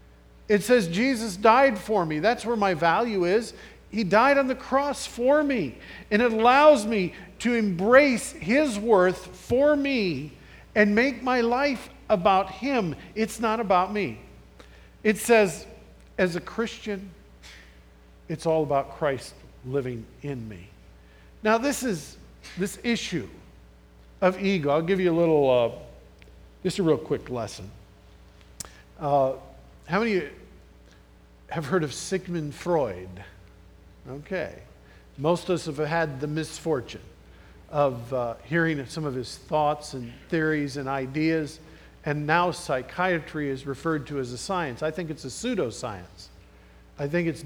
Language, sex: English, male